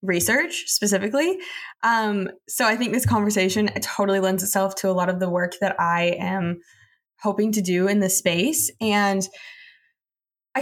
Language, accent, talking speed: English, American, 160 wpm